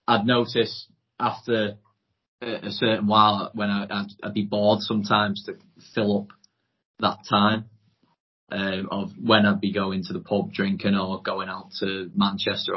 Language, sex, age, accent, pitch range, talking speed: English, male, 20-39, British, 100-110 Hz, 155 wpm